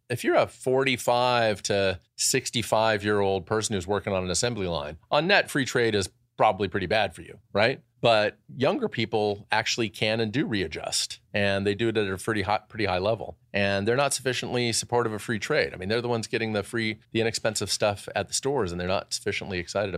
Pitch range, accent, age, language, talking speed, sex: 100-125 Hz, American, 40-59, English, 215 wpm, male